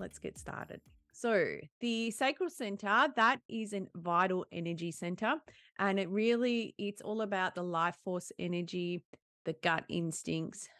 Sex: female